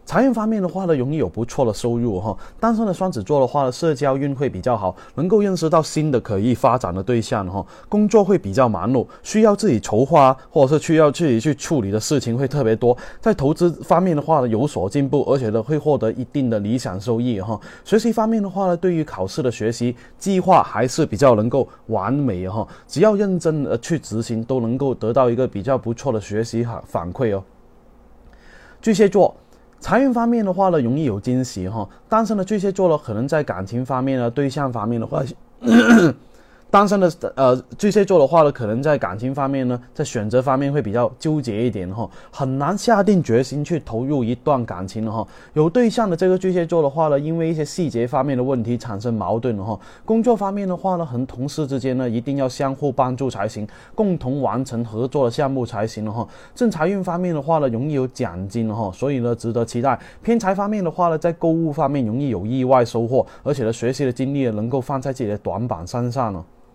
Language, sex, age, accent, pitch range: Chinese, male, 20-39, native, 115-165 Hz